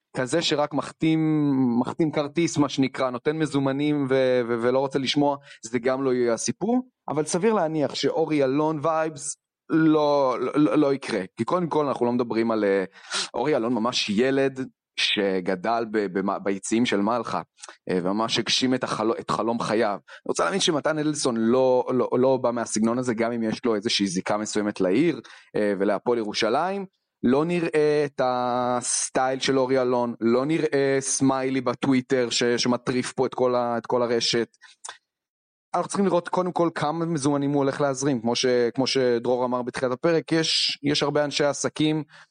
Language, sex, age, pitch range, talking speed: Hebrew, male, 30-49, 120-155 Hz, 165 wpm